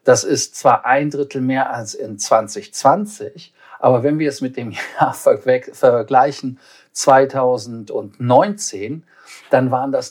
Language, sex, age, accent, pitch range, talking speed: German, male, 50-69, German, 120-145 Hz, 125 wpm